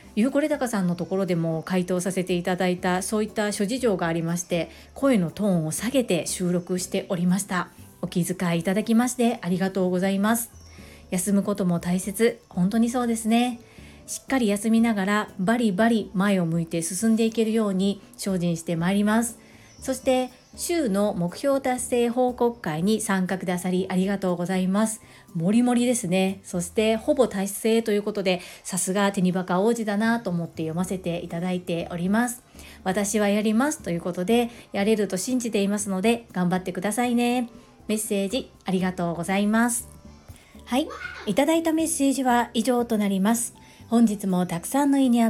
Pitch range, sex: 185-240 Hz, female